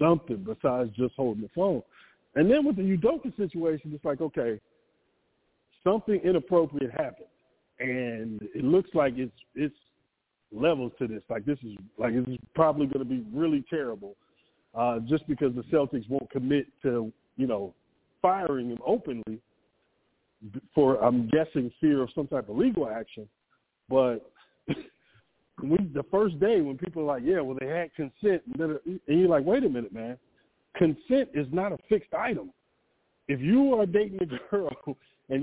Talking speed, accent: 160 wpm, American